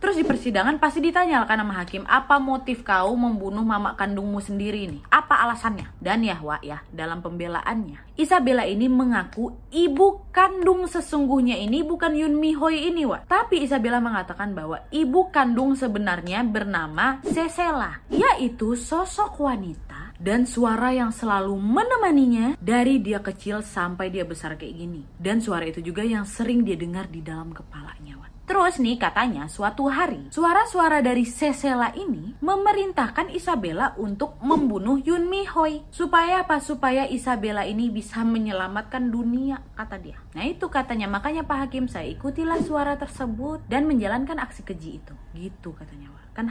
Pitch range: 195-285 Hz